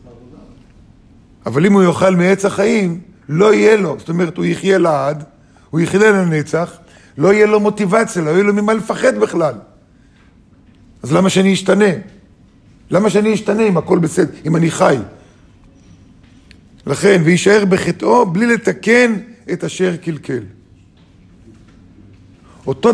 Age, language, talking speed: 50-69, Hebrew, 130 wpm